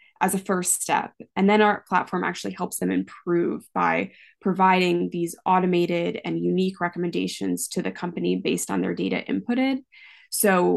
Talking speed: 155 wpm